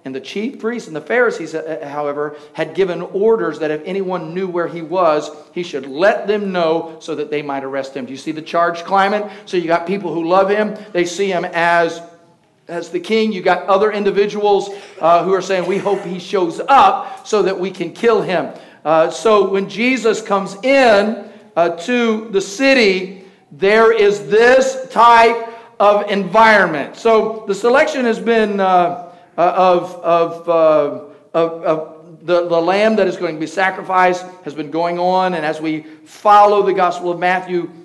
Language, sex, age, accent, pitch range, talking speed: English, male, 50-69, American, 170-215 Hz, 185 wpm